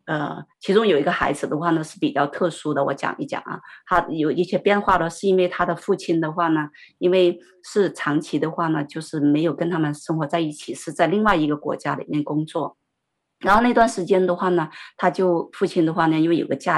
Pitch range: 150-185 Hz